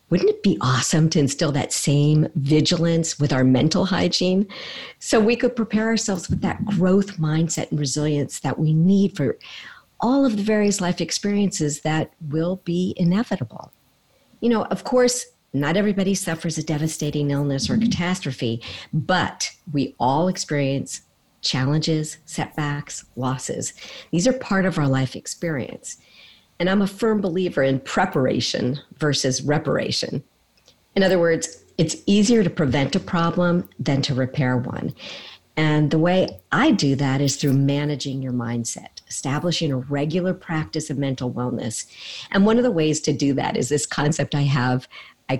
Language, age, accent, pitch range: English, 50-69, American, 140-185 Hz